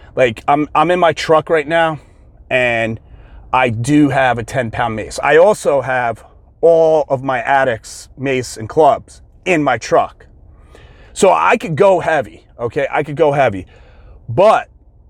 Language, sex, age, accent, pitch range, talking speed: English, male, 30-49, American, 120-160 Hz, 155 wpm